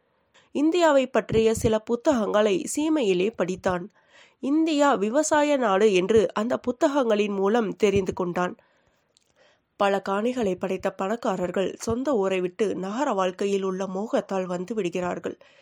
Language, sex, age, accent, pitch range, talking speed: Tamil, female, 20-39, native, 200-280 Hz, 110 wpm